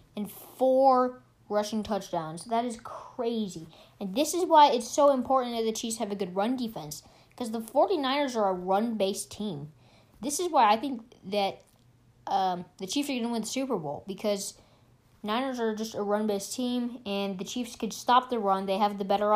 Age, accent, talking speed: 20-39, American, 195 wpm